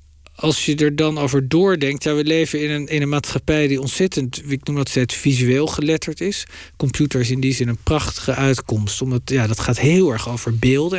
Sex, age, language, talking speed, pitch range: male, 50-69, Dutch, 210 wpm, 125-150 Hz